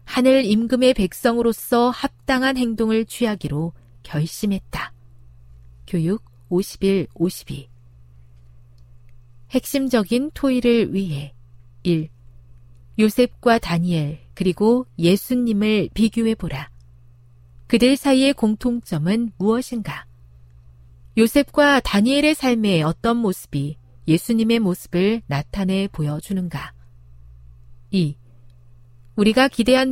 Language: Korean